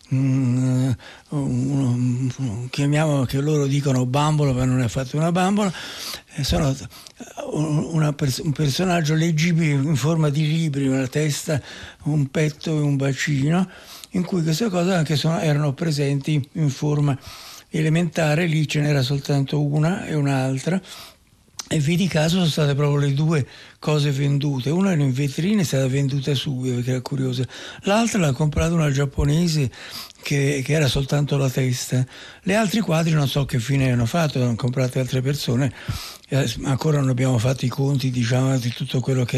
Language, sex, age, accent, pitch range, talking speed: Italian, male, 60-79, native, 130-155 Hz, 150 wpm